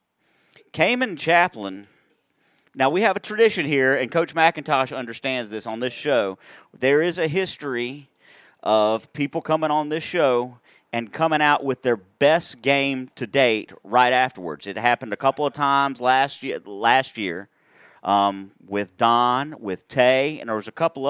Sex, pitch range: male, 125-165 Hz